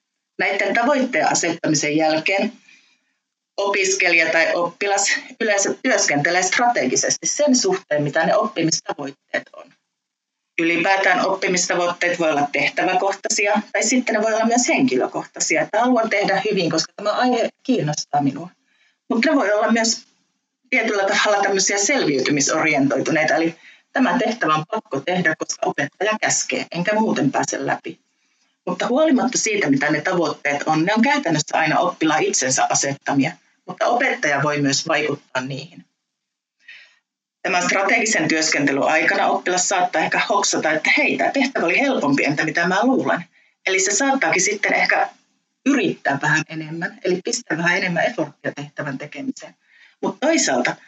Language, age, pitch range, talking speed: Finnish, 30-49, 165-240 Hz, 135 wpm